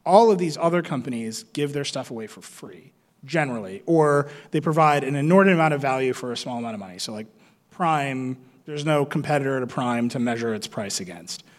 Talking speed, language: 200 wpm, English